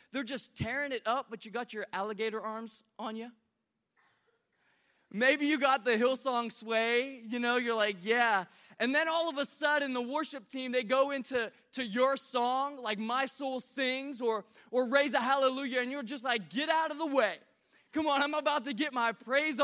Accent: American